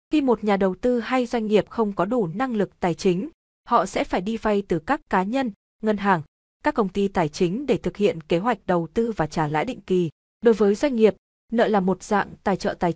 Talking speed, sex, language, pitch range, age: 250 wpm, female, Vietnamese, 180-230 Hz, 20-39